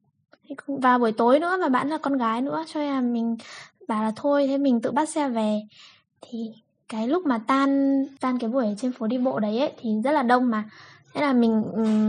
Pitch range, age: 230-290 Hz, 10-29